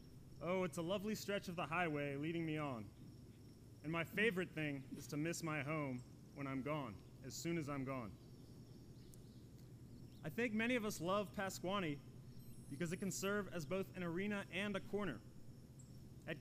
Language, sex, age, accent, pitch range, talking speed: English, male, 30-49, American, 140-185 Hz, 170 wpm